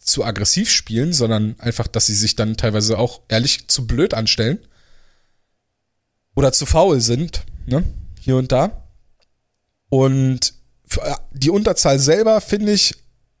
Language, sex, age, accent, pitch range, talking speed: German, male, 20-39, German, 120-155 Hz, 130 wpm